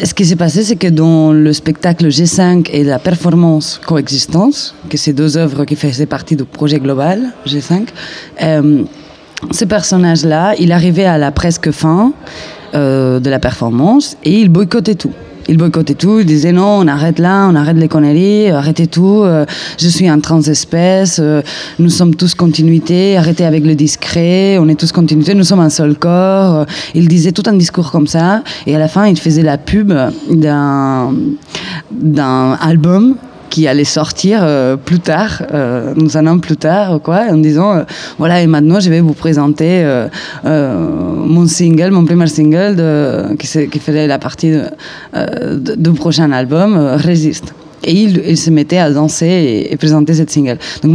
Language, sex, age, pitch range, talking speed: French, female, 20-39, 155-185 Hz, 185 wpm